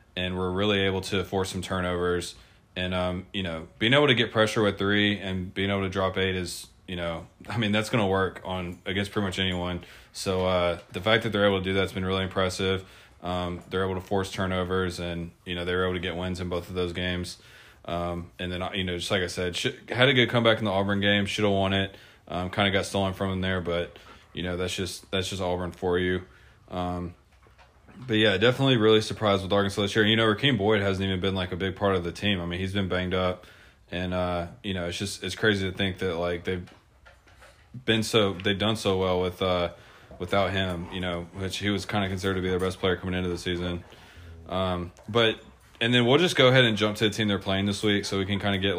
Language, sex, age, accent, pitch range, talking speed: English, male, 20-39, American, 90-100 Hz, 255 wpm